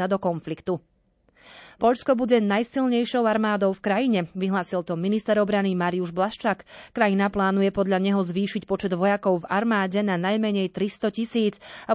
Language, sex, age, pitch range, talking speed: Slovak, female, 30-49, 180-220 Hz, 140 wpm